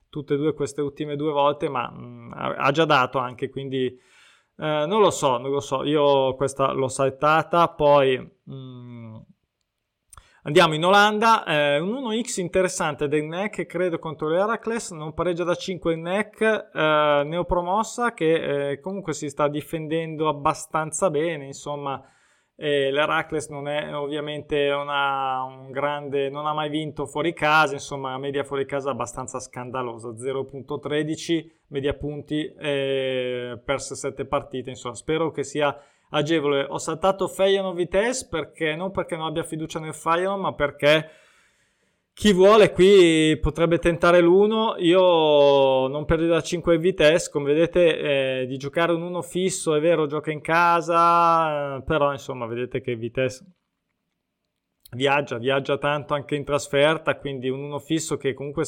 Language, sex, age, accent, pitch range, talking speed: Italian, male, 20-39, native, 135-165 Hz, 145 wpm